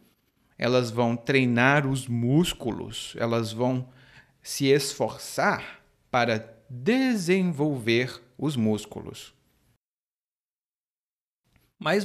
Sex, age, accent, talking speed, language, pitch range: male, 40-59, Brazilian, 70 wpm, Portuguese, 115-185 Hz